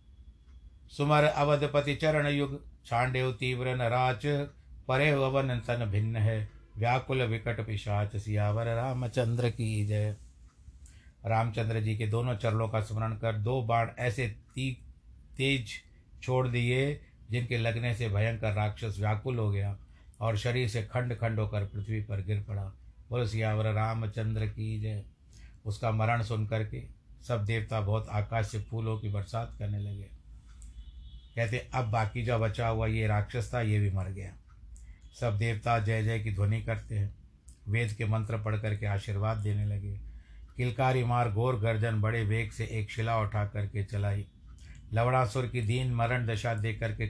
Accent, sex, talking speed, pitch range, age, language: native, male, 150 wpm, 105-120 Hz, 60-79, Hindi